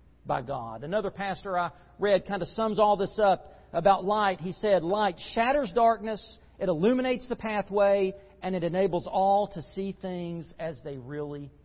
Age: 50-69